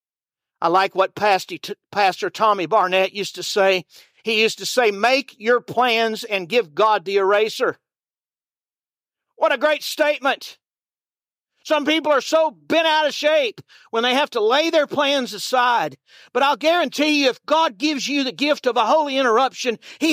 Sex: male